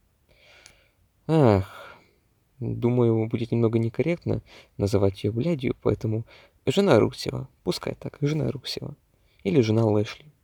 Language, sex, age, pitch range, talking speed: Russian, male, 20-39, 105-135 Hz, 105 wpm